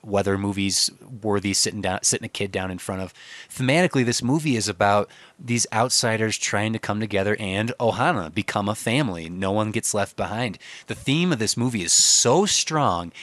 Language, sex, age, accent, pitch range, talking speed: English, male, 20-39, American, 100-125 Hz, 185 wpm